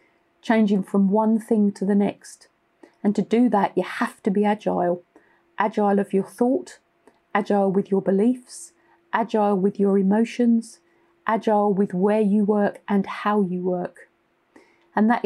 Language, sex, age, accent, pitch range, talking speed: English, female, 40-59, British, 190-225 Hz, 155 wpm